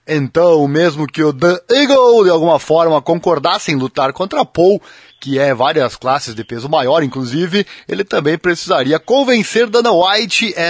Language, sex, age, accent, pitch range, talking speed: Portuguese, male, 20-39, Brazilian, 140-200 Hz, 155 wpm